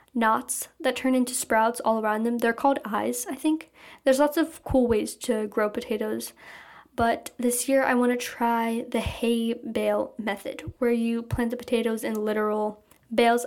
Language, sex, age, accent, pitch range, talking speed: English, female, 10-29, American, 225-265 Hz, 180 wpm